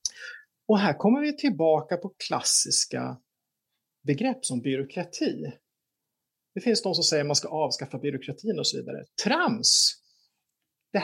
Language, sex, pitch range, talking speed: Swedish, male, 145-215 Hz, 135 wpm